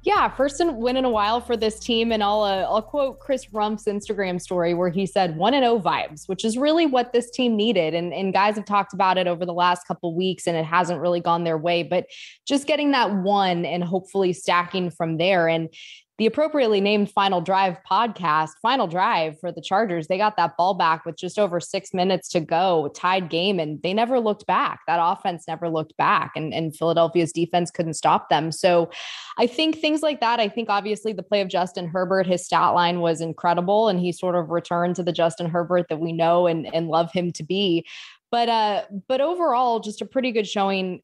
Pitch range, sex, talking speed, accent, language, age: 170-210 Hz, female, 220 wpm, American, English, 20-39